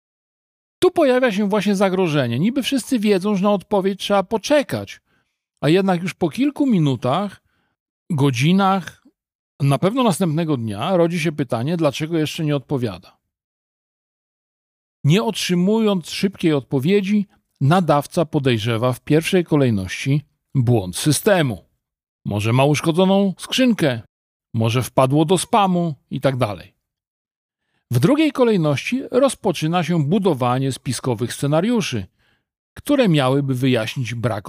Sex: male